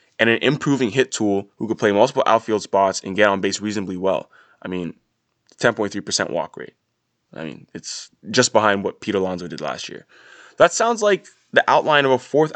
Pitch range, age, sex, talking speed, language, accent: 95-120 Hz, 20-39, male, 195 wpm, English, American